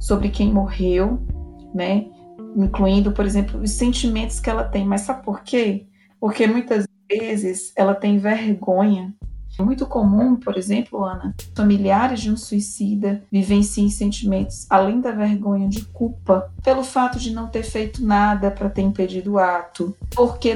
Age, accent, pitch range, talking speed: 20-39, Brazilian, 190-210 Hz, 150 wpm